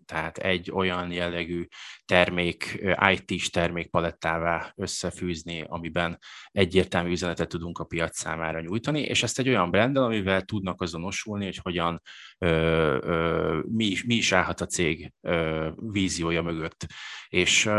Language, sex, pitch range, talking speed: Hungarian, male, 85-105 Hz, 110 wpm